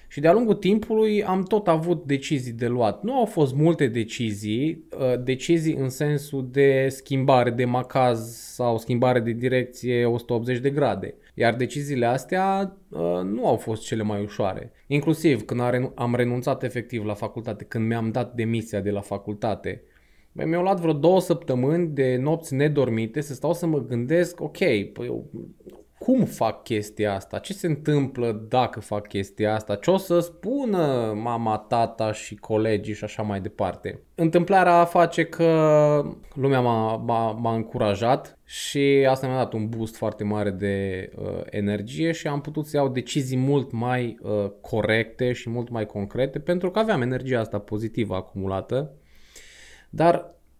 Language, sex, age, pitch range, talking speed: Romanian, male, 20-39, 110-150 Hz, 150 wpm